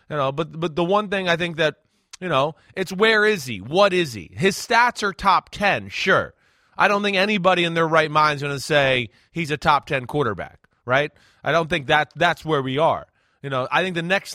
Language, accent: English, American